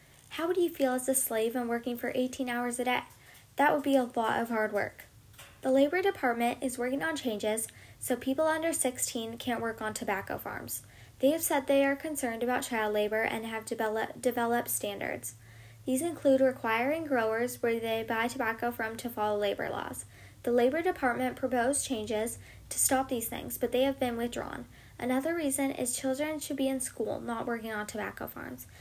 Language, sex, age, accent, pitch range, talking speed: English, female, 10-29, American, 225-270 Hz, 190 wpm